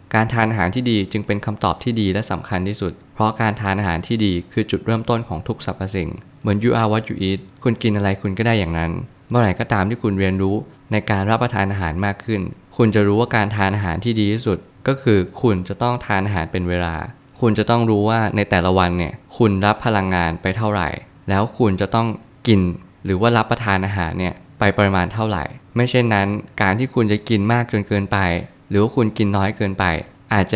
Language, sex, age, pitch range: Thai, male, 20-39, 95-115 Hz